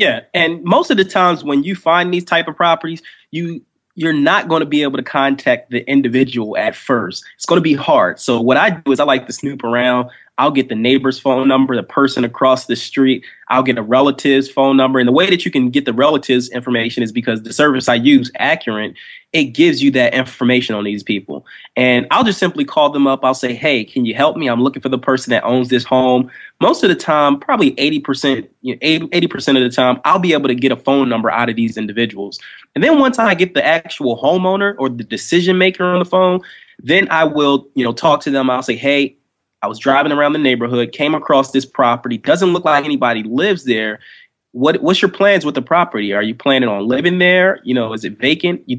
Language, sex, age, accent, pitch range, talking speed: English, male, 20-39, American, 125-155 Hz, 235 wpm